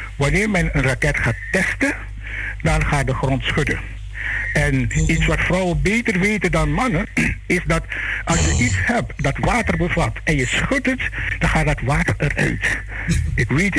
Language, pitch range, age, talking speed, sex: Dutch, 125-175 Hz, 60-79, 170 wpm, male